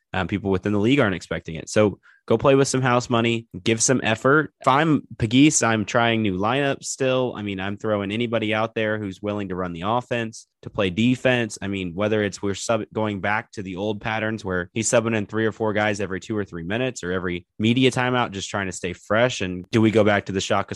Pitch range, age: 105-120 Hz, 20-39